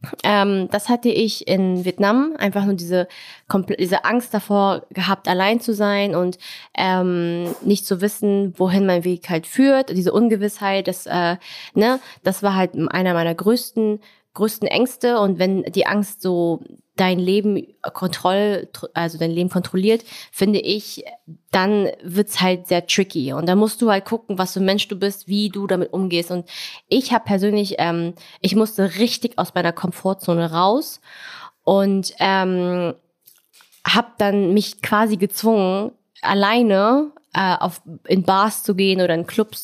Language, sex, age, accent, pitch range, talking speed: German, female, 20-39, German, 175-210 Hz, 155 wpm